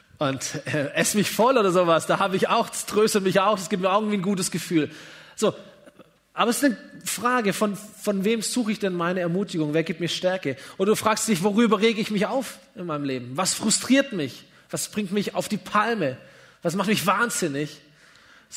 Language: German